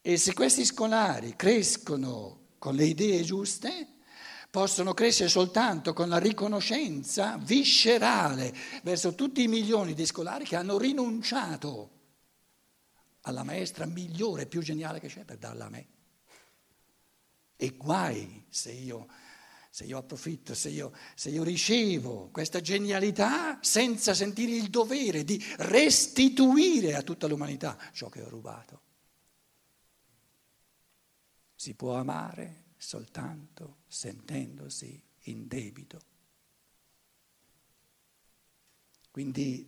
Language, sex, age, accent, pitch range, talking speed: Italian, male, 60-79, native, 150-225 Hz, 105 wpm